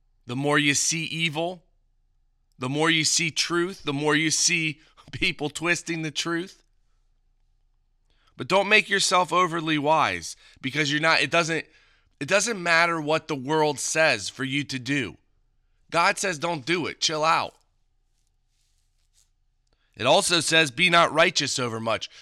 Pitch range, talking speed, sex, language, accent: 125-165 Hz, 145 wpm, male, English, American